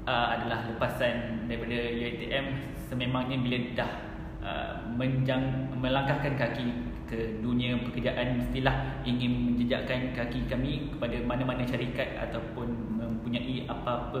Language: Malay